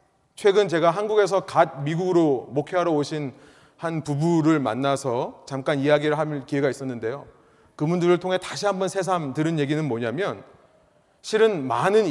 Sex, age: male, 30-49